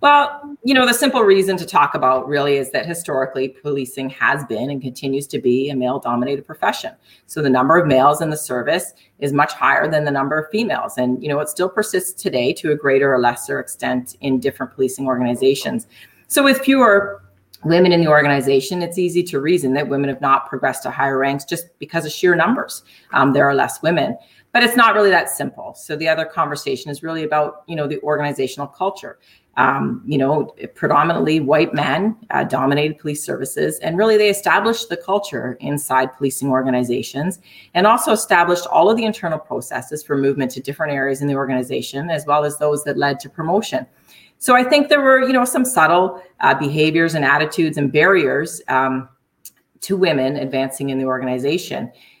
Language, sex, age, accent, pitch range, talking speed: English, female, 30-49, American, 135-185 Hz, 195 wpm